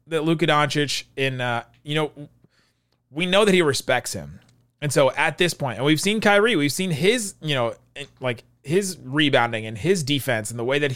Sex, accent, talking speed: male, American, 205 wpm